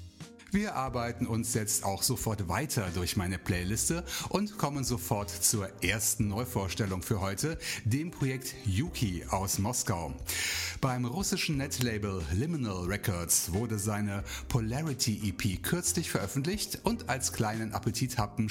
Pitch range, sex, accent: 95-125 Hz, male, German